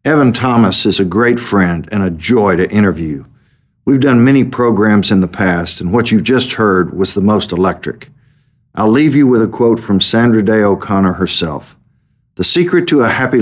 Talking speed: 190 wpm